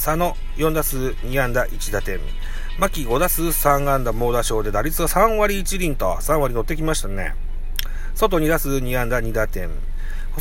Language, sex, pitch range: Japanese, male, 105-175 Hz